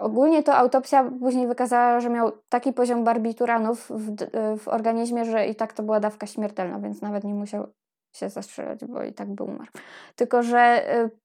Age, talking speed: 10-29, 175 wpm